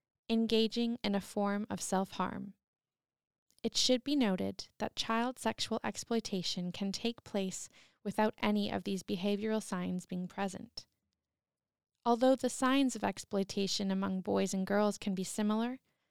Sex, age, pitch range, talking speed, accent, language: female, 20-39, 195-235 Hz, 140 wpm, American, English